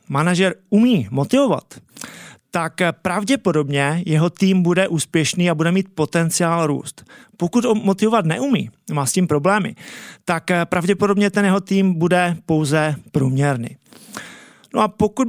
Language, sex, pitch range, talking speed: Czech, male, 150-195 Hz, 130 wpm